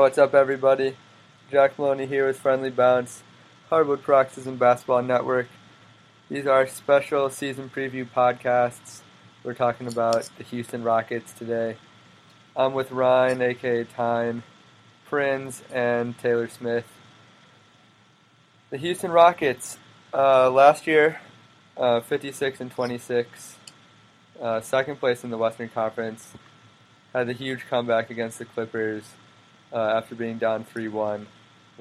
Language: English